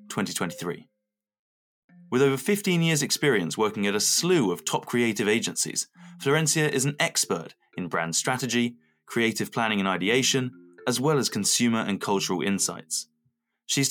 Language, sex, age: English, male, 20-39